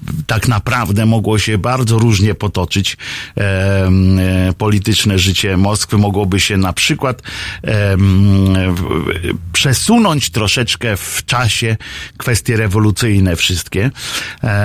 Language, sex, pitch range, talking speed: Polish, male, 95-120 Hz, 105 wpm